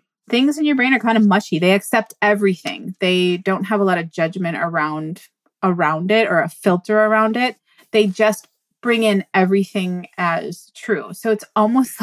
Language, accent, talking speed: English, American, 180 wpm